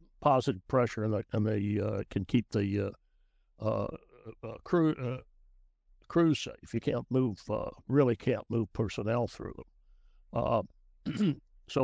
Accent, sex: American, male